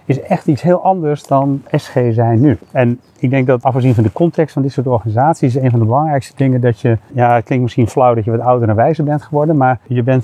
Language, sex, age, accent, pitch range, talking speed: Dutch, male, 40-59, Dutch, 120-150 Hz, 260 wpm